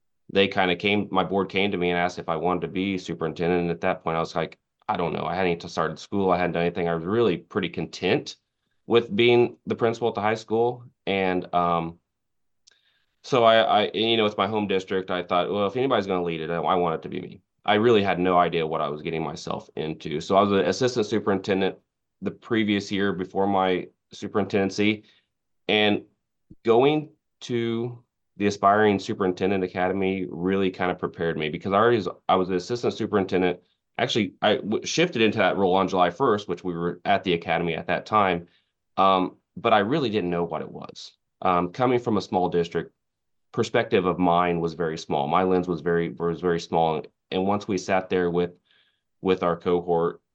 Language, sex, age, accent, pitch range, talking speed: English, male, 30-49, American, 90-105 Hz, 210 wpm